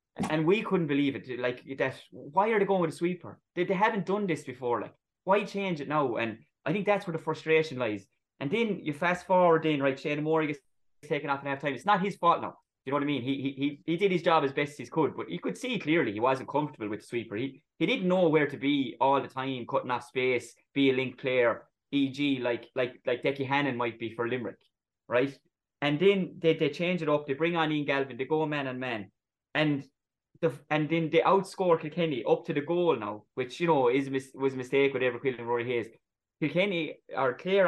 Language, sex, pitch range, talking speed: English, male, 125-160 Hz, 245 wpm